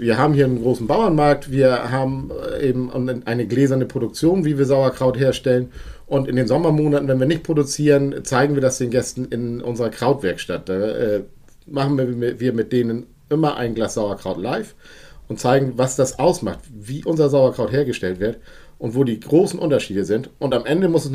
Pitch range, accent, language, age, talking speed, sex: 115-145 Hz, German, German, 50-69, 185 wpm, male